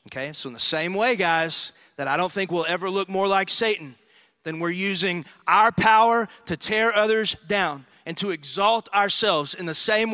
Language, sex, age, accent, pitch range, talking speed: English, male, 30-49, American, 155-230 Hz, 195 wpm